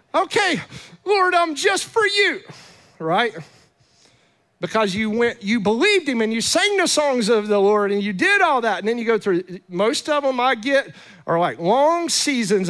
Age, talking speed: 40-59, 190 wpm